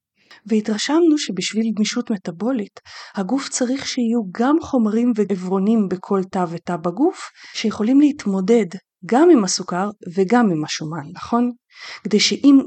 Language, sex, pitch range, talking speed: Hebrew, female, 180-245 Hz, 120 wpm